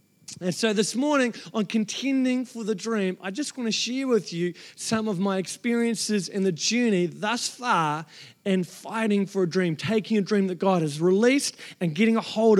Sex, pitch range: male, 200-245 Hz